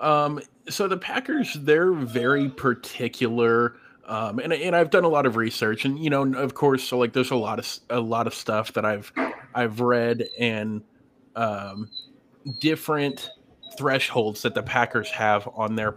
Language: English